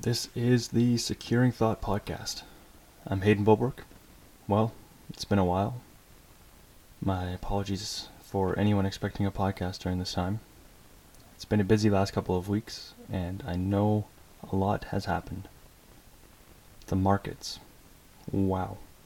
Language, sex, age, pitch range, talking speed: English, male, 20-39, 95-110 Hz, 130 wpm